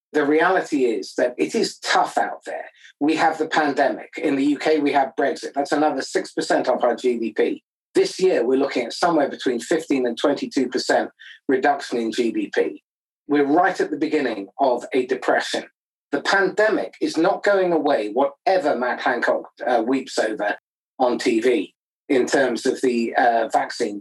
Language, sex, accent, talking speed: English, male, British, 165 wpm